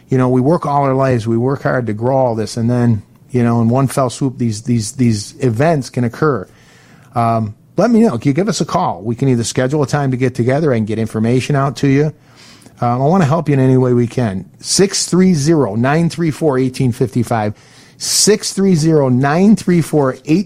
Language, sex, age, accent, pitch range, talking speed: English, male, 40-59, American, 120-150 Hz, 195 wpm